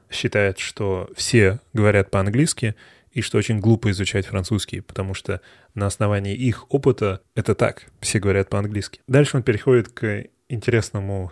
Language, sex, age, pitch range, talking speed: Russian, male, 20-39, 100-125 Hz, 145 wpm